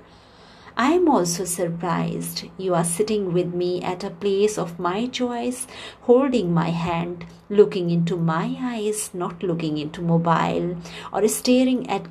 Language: English